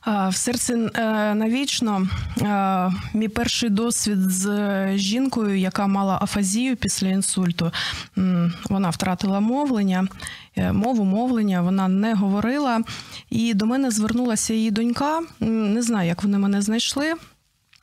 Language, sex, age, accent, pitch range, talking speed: Ukrainian, female, 20-39, native, 190-230 Hz, 110 wpm